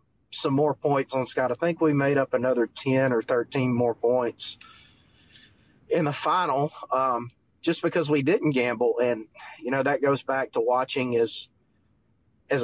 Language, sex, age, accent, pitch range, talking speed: English, male, 30-49, American, 120-145 Hz, 165 wpm